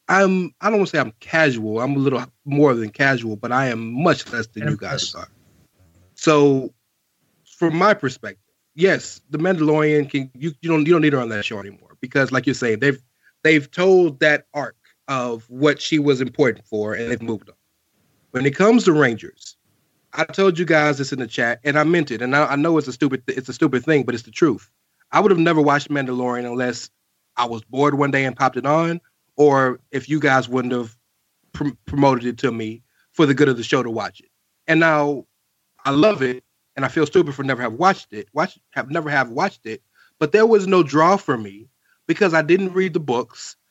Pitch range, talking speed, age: 125-160 Hz, 220 wpm, 30-49